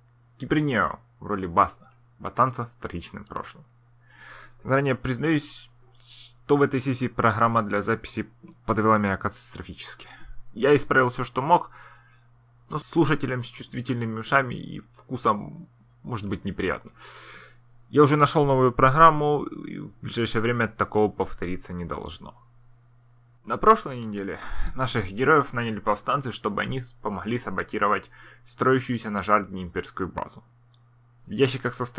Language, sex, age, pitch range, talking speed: Russian, male, 20-39, 115-130 Hz, 125 wpm